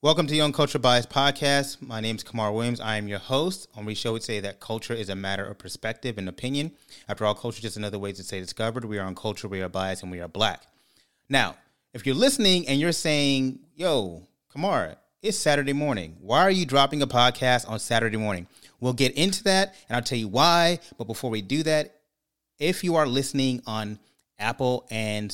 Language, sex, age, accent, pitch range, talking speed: English, male, 30-49, American, 105-135 Hz, 220 wpm